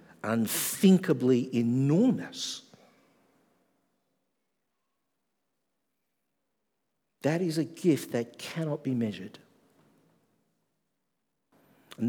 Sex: male